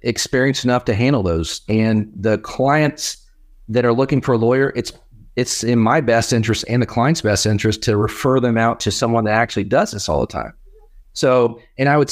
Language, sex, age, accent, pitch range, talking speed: English, male, 40-59, American, 105-130 Hz, 210 wpm